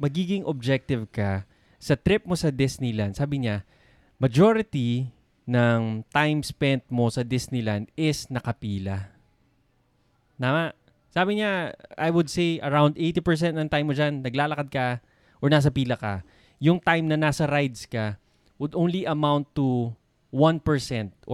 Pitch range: 120-150 Hz